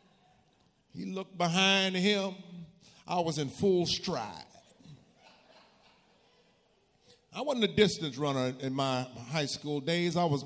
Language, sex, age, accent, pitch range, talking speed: English, male, 50-69, American, 160-265 Hz, 120 wpm